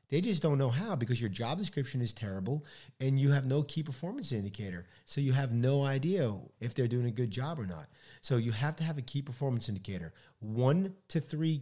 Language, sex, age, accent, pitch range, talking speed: English, male, 40-59, American, 105-140 Hz, 220 wpm